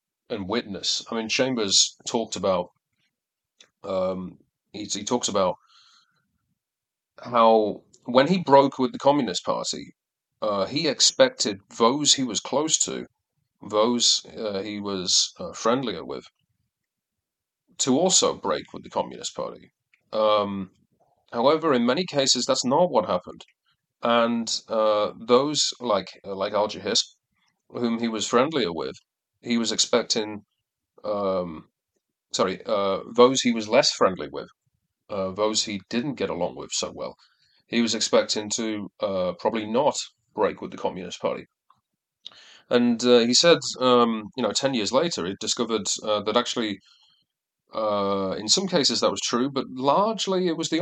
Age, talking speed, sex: 30-49, 145 wpm, male